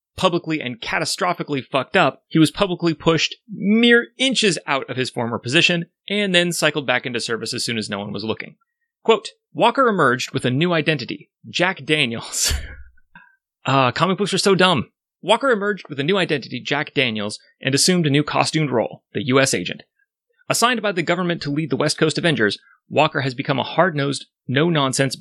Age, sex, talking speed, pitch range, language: 30-49, male, 185 wpm, 125-175 Hz, English